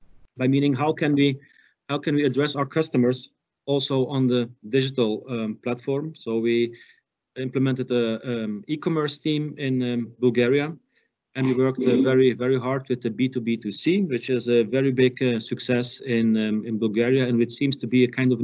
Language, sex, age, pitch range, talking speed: English, male, 40-59, 120-140 Hz, 180 wpm